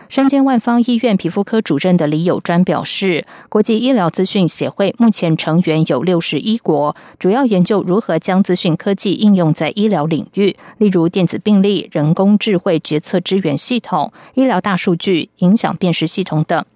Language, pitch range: German, 165-215 Hz